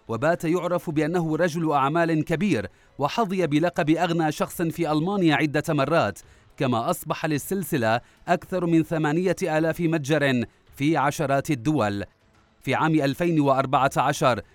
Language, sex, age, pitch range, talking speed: Arabic, male, 30-49, 135-170 Hz, 115 wpm